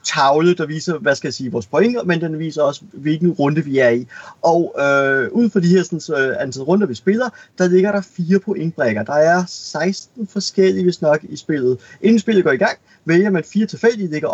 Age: 30-49